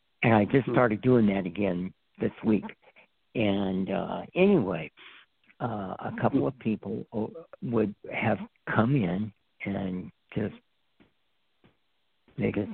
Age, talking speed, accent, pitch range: 60-79, 120 wpm, American, 100-110 Hz